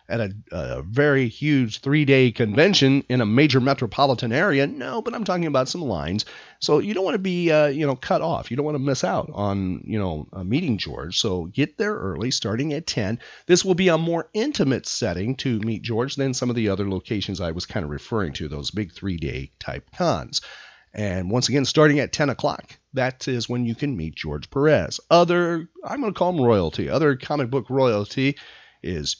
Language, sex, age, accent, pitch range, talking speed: English, male, 40-59, American, 110-145 Hz, 210 wpm